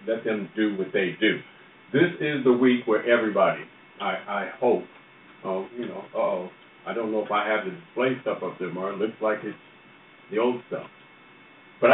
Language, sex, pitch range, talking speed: English, male, 100-135 Hz, 205 wpm